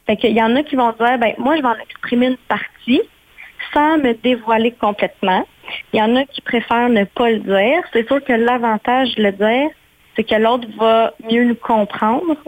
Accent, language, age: Canadian, French, 30-49